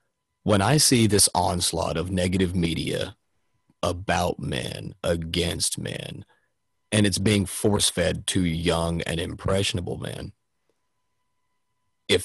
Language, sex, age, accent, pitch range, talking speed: English, male, 30-49, American, 90-110 Hz, 110 wpm